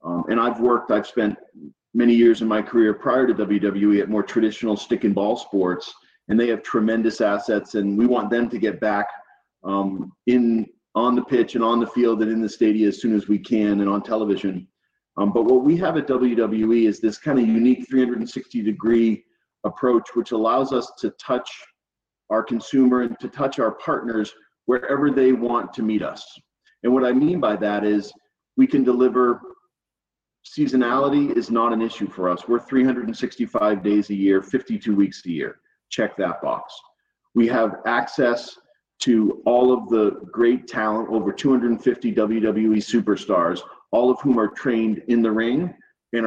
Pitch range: 105-125 Hz